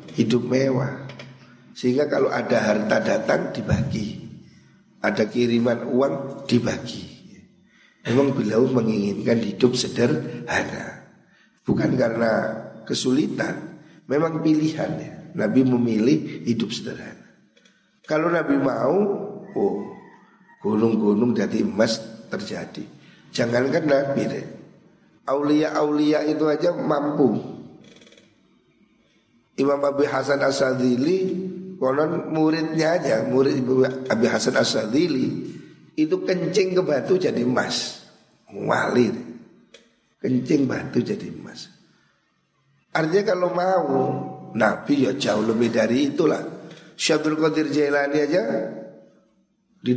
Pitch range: 125-160 Hz